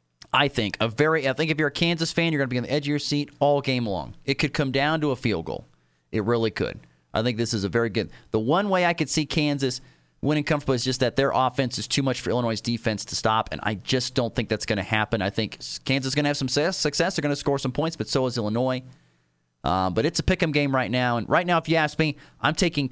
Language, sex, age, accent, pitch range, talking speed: English, male, 30-49, American, 120-160 Hz, 290 wpm